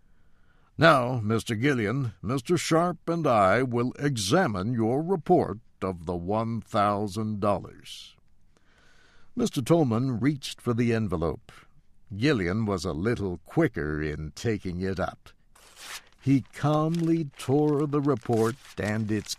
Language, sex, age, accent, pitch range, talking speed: English, male, 60-79, American, 95-130 Hz, 110 wpm